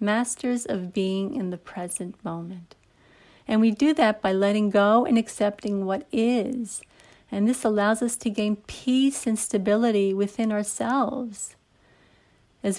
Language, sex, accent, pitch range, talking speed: English, female, American, 195-230 Hz, 140 wpm